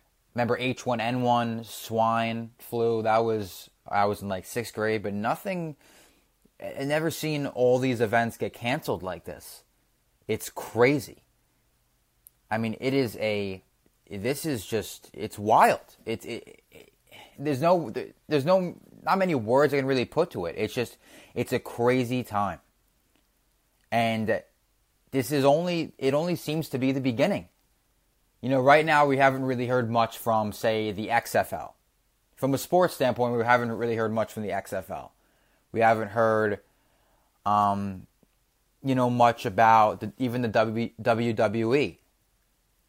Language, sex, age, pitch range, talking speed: English, male, 20-39, 110-130 Hz, 145 wpm